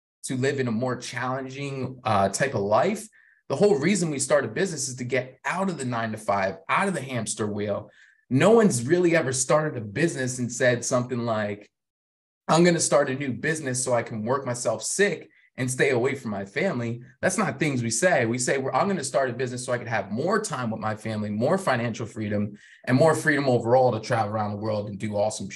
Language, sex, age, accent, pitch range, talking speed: English, male, 20-39, American, 115-155 Hz, 225 wpm